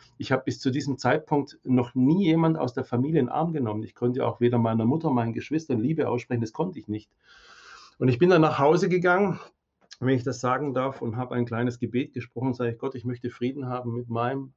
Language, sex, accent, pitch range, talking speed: German, male, German, 115-130 Hz, 230 wpm